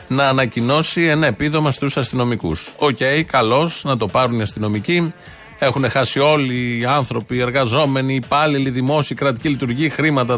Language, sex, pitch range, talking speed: Greek, male, 120-155 Hz, 150 wpm